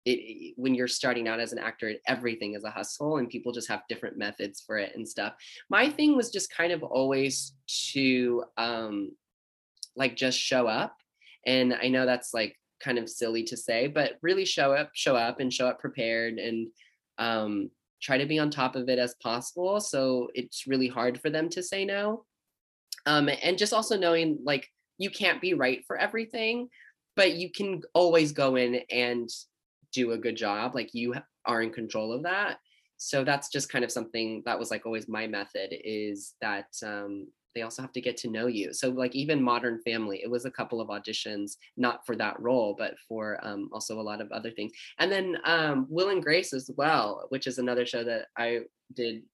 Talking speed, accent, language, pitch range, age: 205 wpm, American, English, 115-150 Hz, 10-29